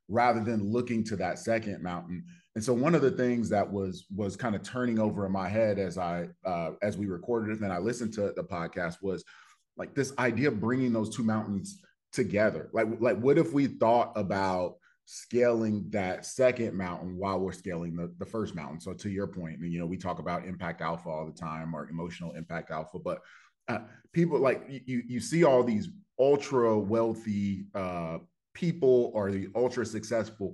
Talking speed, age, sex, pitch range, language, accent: 200 wpm, 30-49, male, 95-120 Hz, English, American